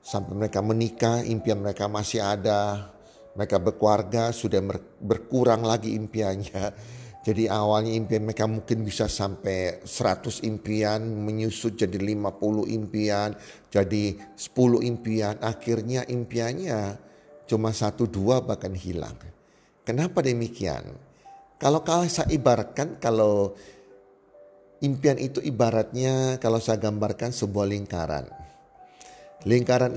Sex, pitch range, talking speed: male, 100-115 Hz, 100 wpm